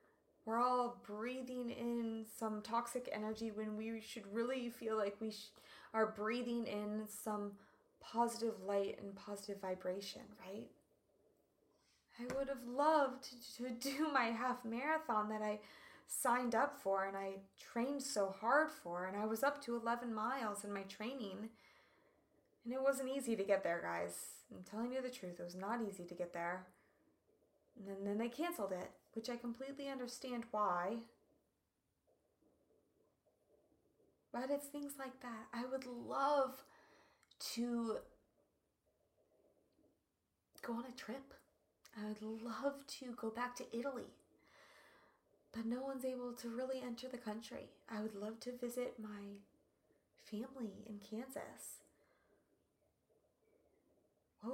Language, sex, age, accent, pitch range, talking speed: English, female, 20-39, American, 210-260 Hz, 140 wpm